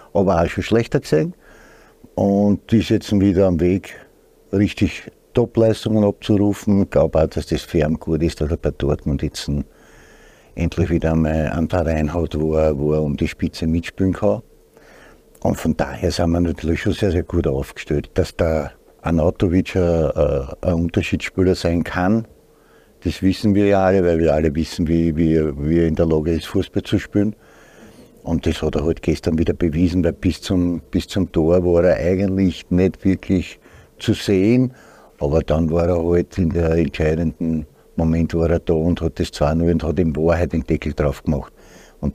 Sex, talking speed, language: male, 180 wpm, German